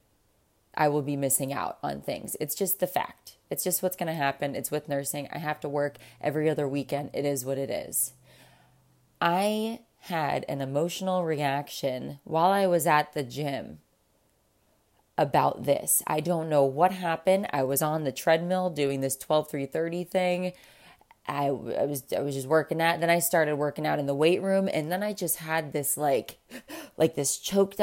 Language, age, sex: English, 20-39, female